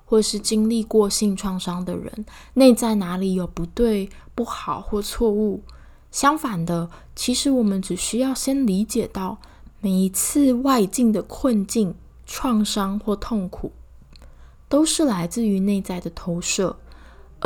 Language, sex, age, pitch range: Chinese, female, 20-39, 190-240 Hz